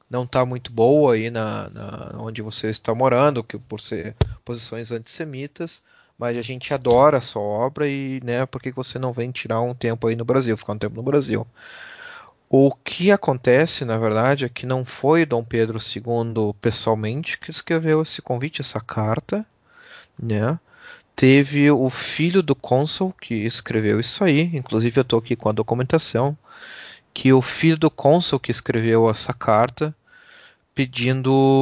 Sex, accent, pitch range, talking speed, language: male, Brazilian, 115-145 Hz, 165 wpm, Portuguese